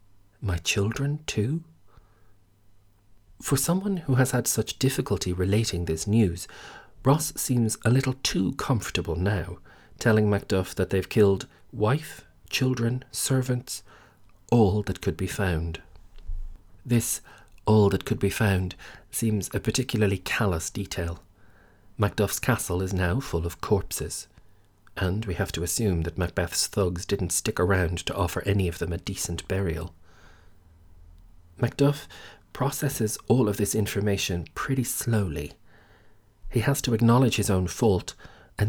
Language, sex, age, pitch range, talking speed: English, male, 40-59, 90-110 Hz, 135 wpm